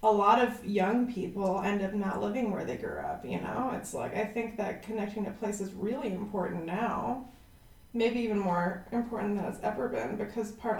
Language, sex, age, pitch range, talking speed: English, female, 20-39, 205-240 Hz, 205 wpm